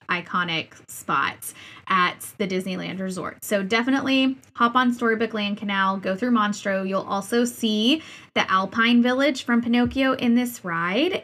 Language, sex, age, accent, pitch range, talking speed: English, female, 20-39, American, 200-245 Hz, 145 wpm